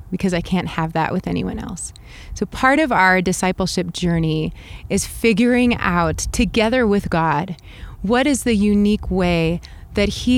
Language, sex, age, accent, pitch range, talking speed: English, female, 30-49, American, 175-240 Hz, 155 wpm